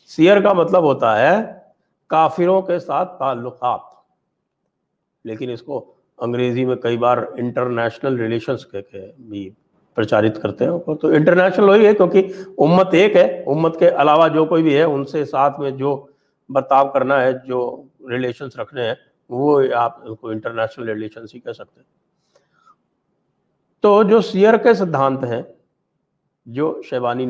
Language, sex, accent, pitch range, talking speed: English, male, Indian, 115-140 Hz, 145 wpm